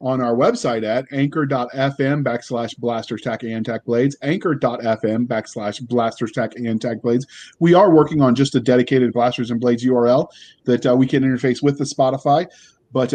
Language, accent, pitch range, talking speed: English, American, 125-155 Hz, 175 wpm